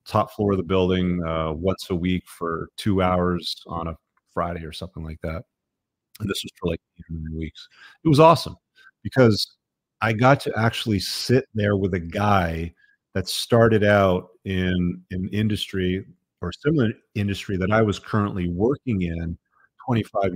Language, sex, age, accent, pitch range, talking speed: English, male, 40-59, American, 90-110 Hz, 170 wpm